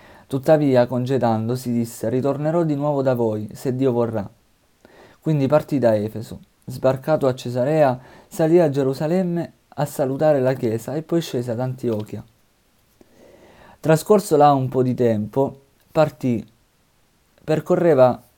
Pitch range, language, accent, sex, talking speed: 120-150 Hz, Italian, native, male, 125 wpm